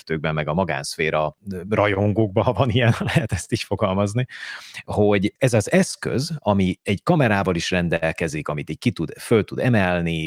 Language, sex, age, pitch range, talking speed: Hungarian, male, 30-49, 80-105 Hz, 145 wpm